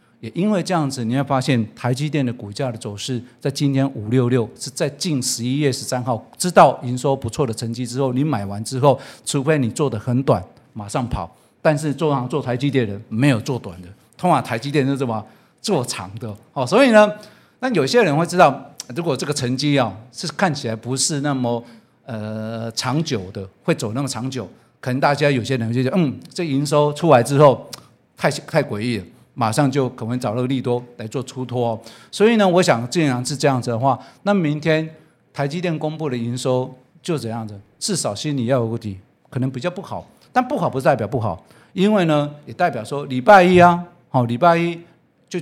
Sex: male